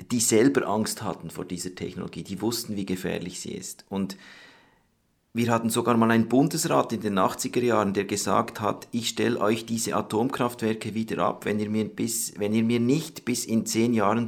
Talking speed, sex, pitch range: 195 wpm, male, 90-115 Hz